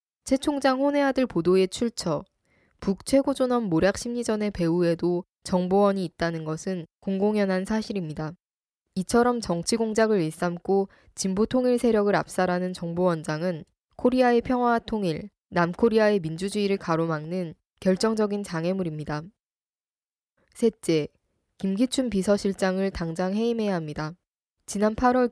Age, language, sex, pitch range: 20-39, Korean, female, 175-230 Hz